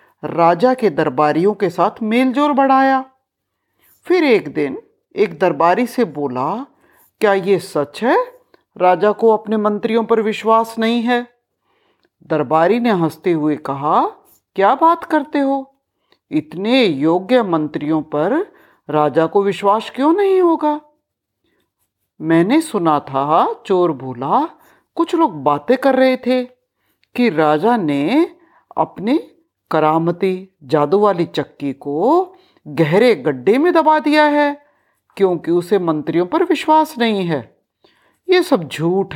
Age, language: 50-69, Hindi